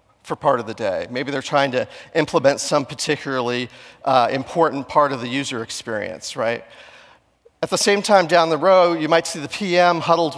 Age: 40-59